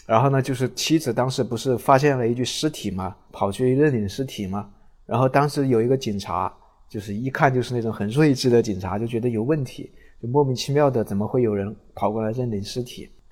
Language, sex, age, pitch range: Chinese, male, 20-39, 100-125 Hz